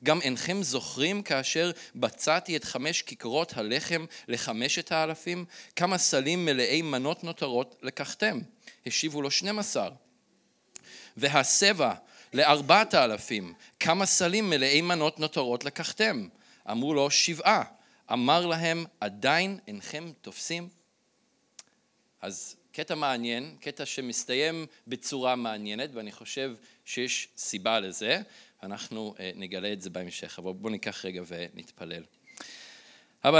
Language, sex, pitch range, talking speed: Hebrew, male, 110-155 Hz, 110 wpm